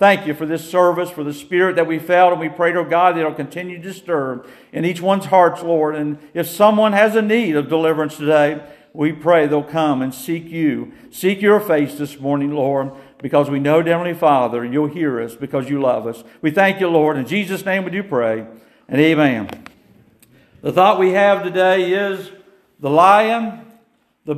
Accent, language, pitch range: American, English, 155-195 Hz